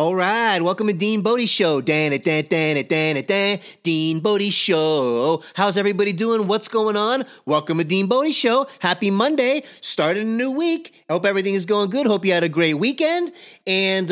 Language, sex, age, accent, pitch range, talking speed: English, male, 30-49, American, 175-245 Hz, 160 wpm